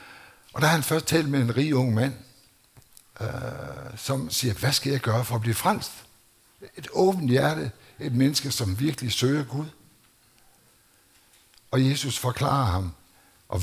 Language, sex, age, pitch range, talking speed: Danish, male, 60-79, 110-130 Hz, 160 wpm